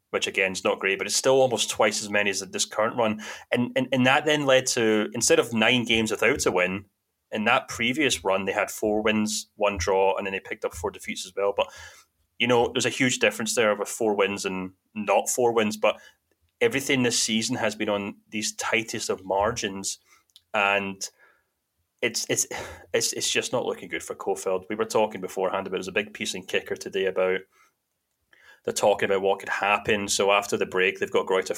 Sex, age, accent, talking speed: male, 30-49, British, 215 wpm